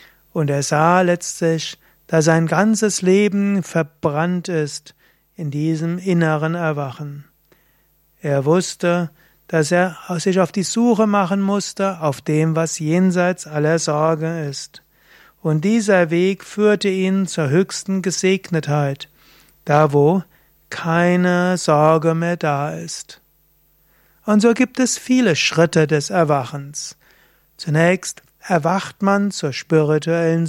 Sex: male